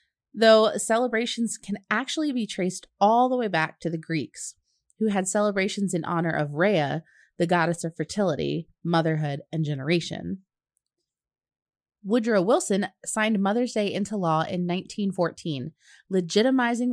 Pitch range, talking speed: 165-210 Hz, 130 wpm